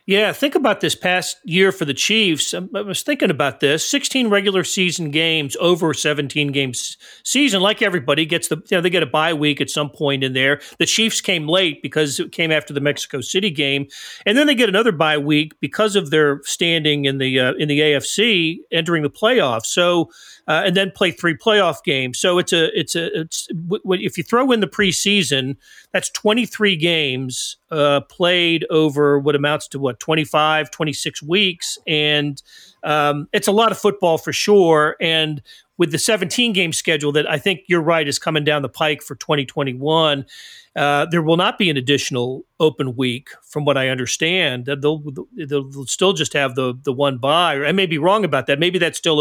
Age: 40-59